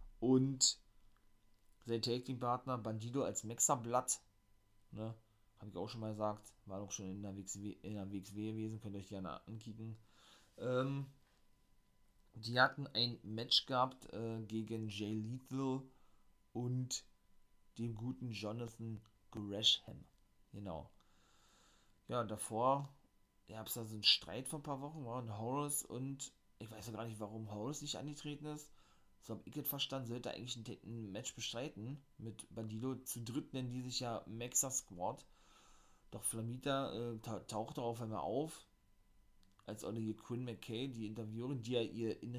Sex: male